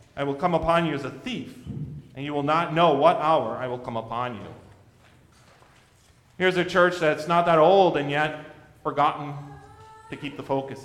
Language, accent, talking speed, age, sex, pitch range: English, American, 190 wpm, 40-59, male, 130-200 Hz